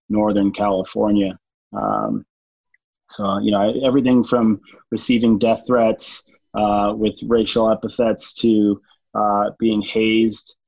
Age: 30-49